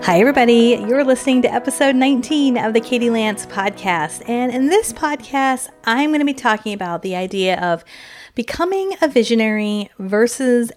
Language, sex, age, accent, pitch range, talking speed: English, female, 30-49, American, 175-230 Hz, 160 wpm